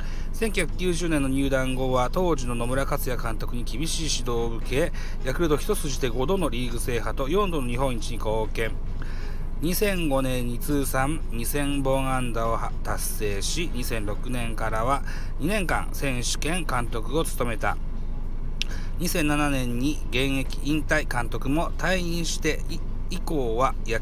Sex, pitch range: male, 115-155 Hz